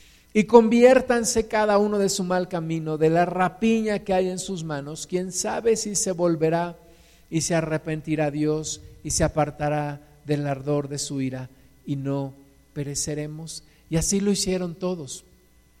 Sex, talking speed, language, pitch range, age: male, 155 wpm, Spanish, 150-190 Hz, 50-69